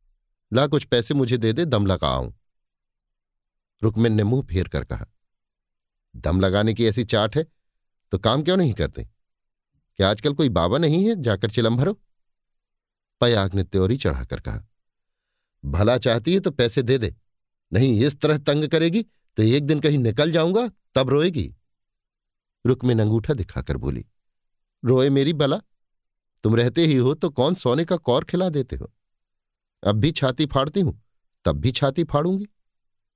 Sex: male